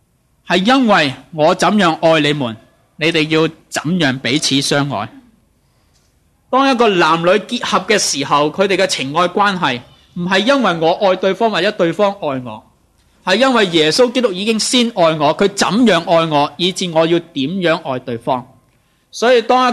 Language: Chinese